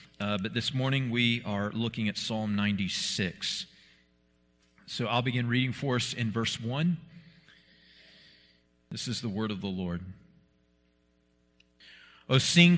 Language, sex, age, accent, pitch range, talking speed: English, male, 40-59, American, 90-135 Hz, 130 wpm